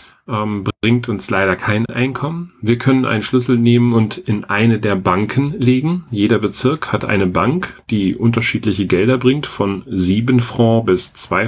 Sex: male